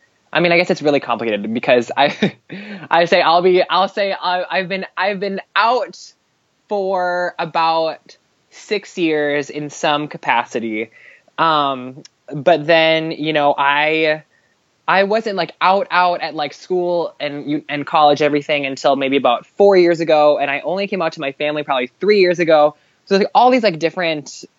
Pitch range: 140-175 Hz